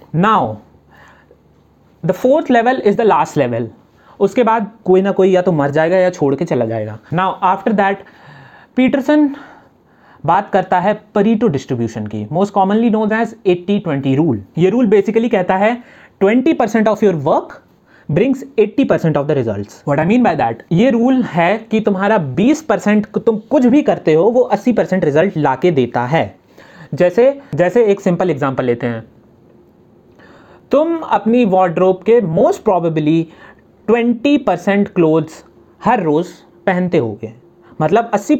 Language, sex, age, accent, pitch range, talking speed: Hindi, male, 30-49, native, 160-230 Hz, 160 wpm